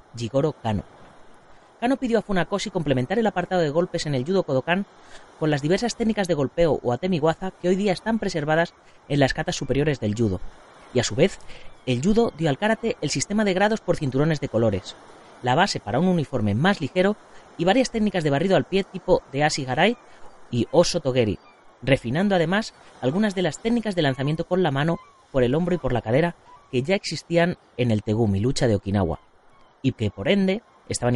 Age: 30-49